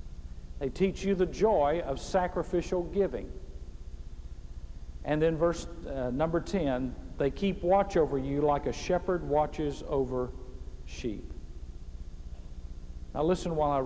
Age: 50-69